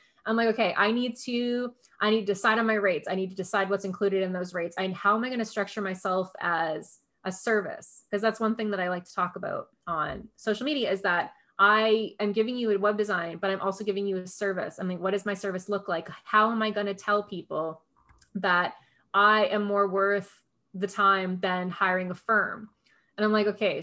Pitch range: 180-210 Hz